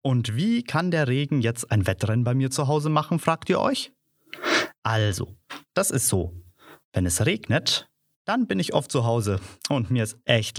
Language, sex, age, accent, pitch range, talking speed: German, male, 30-49, German, 110-150 Hz, 185 wpm